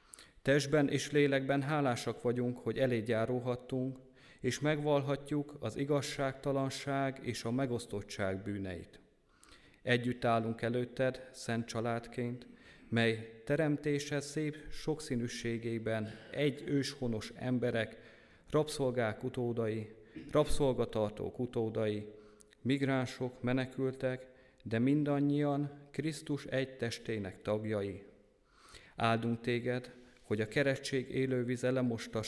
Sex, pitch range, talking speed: male, 115-135 Hz, 85 wpm